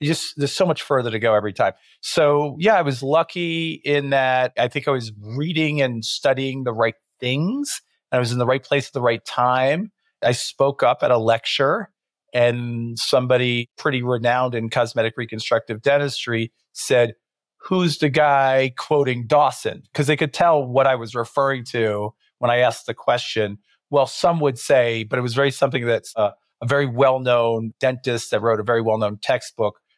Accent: American